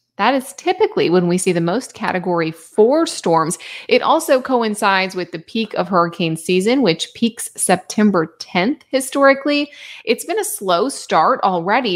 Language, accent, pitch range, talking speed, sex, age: English, American, 170-235 Hz, 155 wpm, female, 20-39